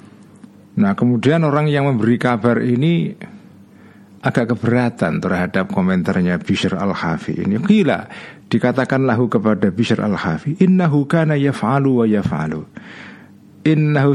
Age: 50-69